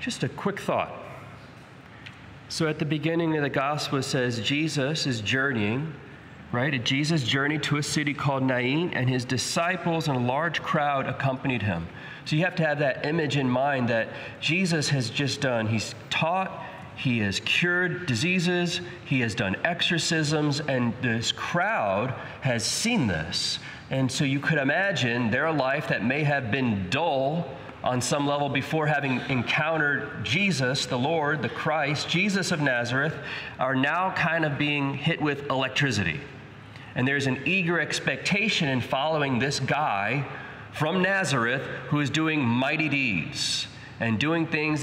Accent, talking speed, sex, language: American, 155 wpm, male, English